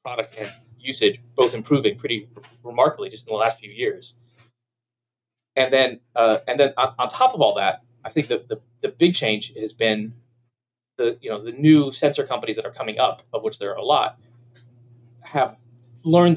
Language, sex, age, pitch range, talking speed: English, male, 30-49, 120-155 Hz, 190 wpm